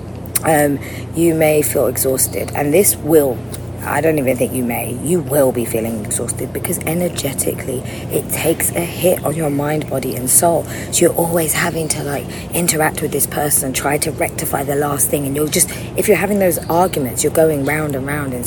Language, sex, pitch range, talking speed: English, female, 130-165 Hz, 200 wpm